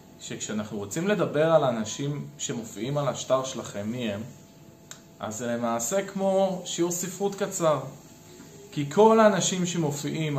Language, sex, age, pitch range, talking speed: Hebrew, male, 20-39, 130-175 Hz, 120 wpm